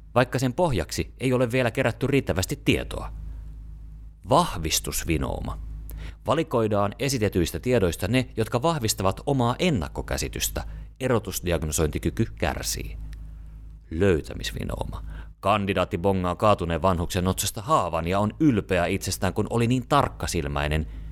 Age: 30-49